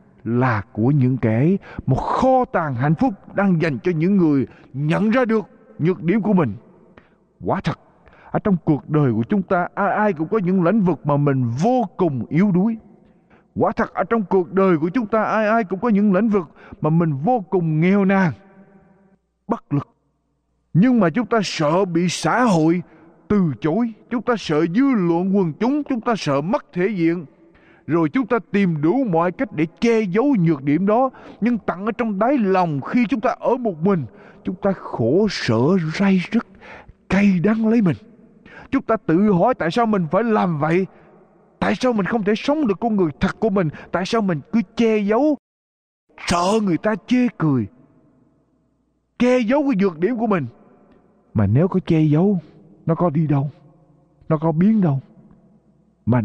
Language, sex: Spanish, male